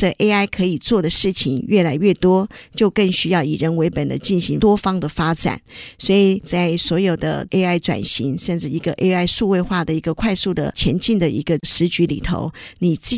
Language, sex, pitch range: Chinese, female, 170-200 Hz